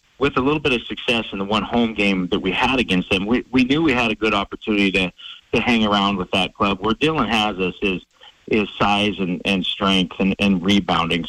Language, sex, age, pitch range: English, male, 40-59, 95-110 Hz